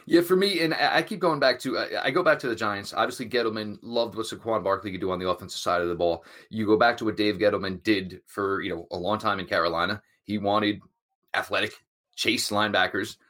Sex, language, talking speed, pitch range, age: male, English, 230 wpm, 100-120 Hz, 30-49